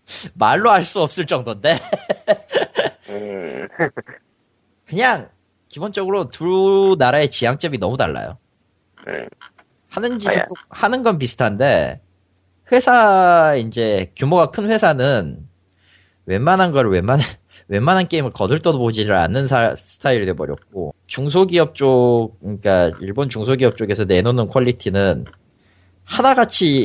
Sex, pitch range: male, 95-160 Hz